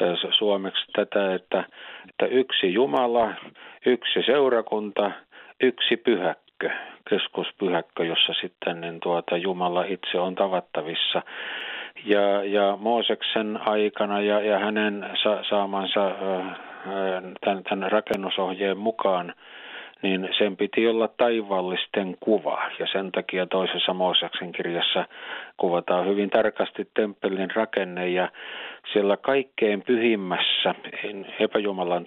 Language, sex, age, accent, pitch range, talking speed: Finnish, male, 50-69, native, 95-110 Hz, 95 wpm